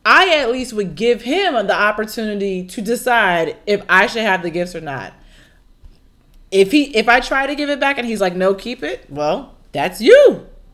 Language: English